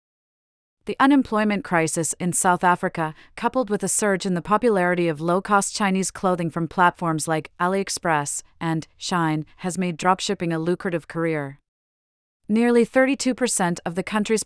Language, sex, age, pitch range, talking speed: English, female, 40-59, 165-200 Hz, 140 wpm